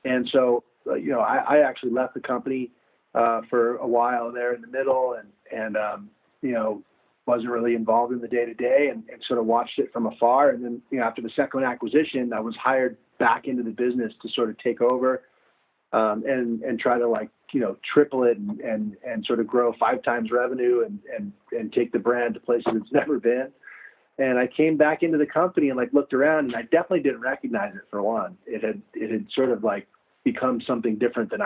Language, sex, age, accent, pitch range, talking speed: English, male, 40-59, American, 115-135 Hz, 225 wpm